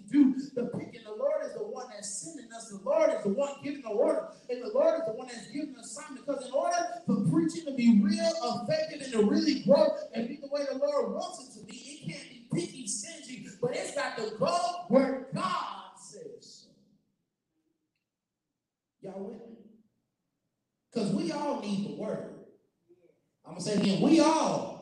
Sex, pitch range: male, 215-300 Hz